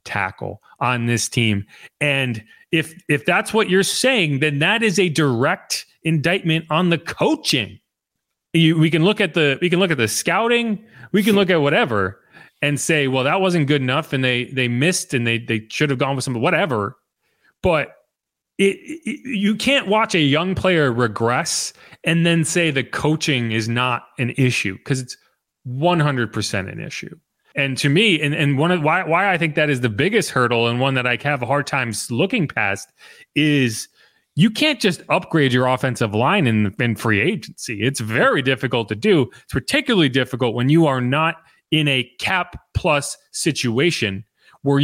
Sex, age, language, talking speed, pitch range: male, 30-49, English, 185 wpm, 120-170 Hz